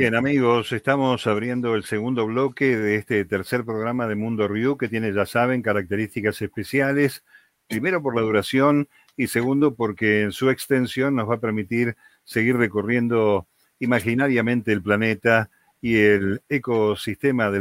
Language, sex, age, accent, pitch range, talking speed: Spanish, male, 50-69, Argentinian, 105-120 Hz, 145 wpm